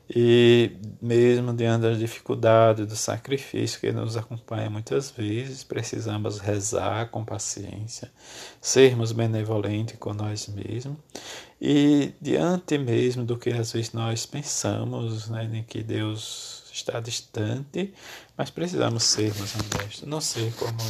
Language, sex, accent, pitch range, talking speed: Portuguese, male, Brazilian, 110-125 Hz, 125 wpm